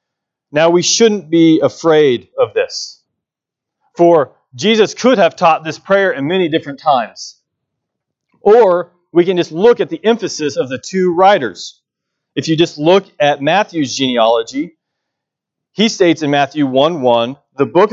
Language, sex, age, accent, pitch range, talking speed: English, male, 40-59, American, 145-200 Hz, 145 wpm